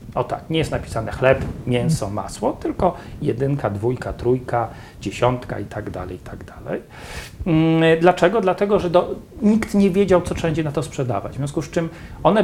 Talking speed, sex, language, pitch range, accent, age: 175 wpm, male, Polish, 120-160 Hz, native, 40-59